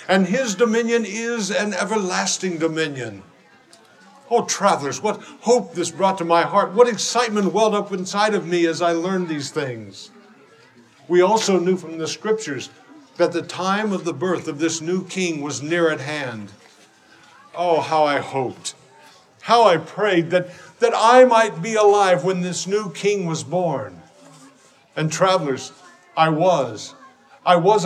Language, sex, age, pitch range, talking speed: English, male, 60-79, 170-220 Hz, 155 wpm